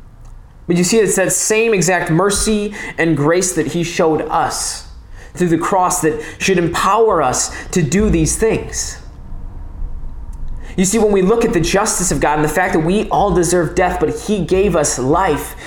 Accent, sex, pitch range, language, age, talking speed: American, male, 145-195 Hz, English, 20-39, 185 wpm